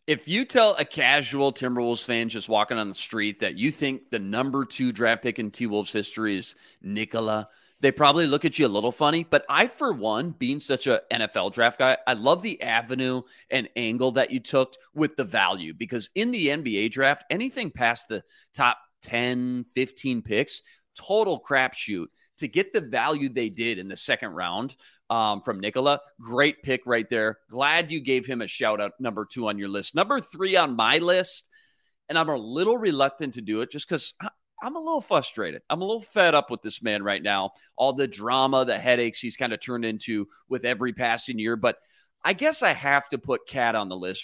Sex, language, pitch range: male, English, 115-155 Hz